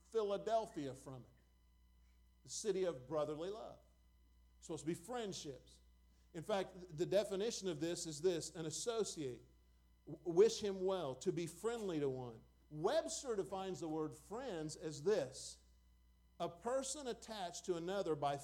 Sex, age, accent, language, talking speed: male, 50-69, American, English, 140 wpm